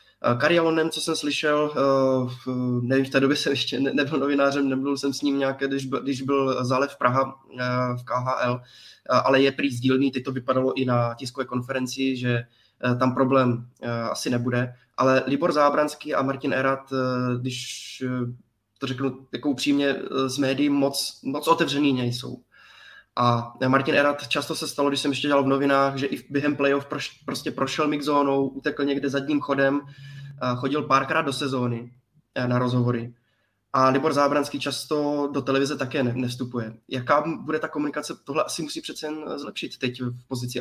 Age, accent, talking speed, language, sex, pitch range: 20-39, native, 160 wpm, Czech, male, 125-140 Hz